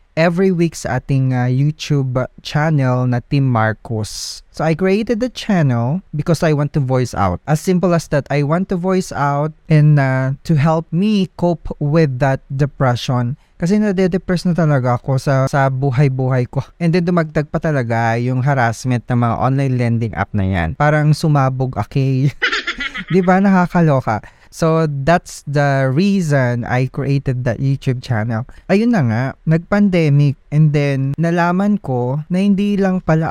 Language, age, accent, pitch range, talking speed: Filipino, 20-39, native, 130-165 Hz, 160 wpm